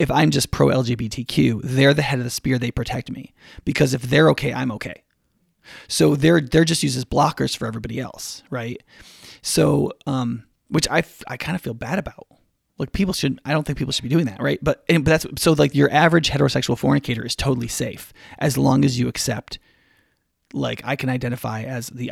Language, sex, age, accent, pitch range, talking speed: English, male, 30-49, American, 125-150 Hz, 210 wpm